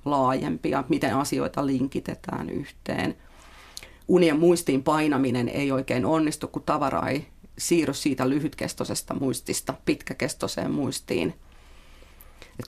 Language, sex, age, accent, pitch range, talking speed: Finnish, female, 40-59, native, 130-170 Hz, 100 wpm